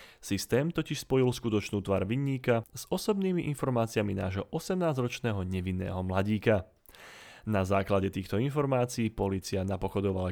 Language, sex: Slovak, male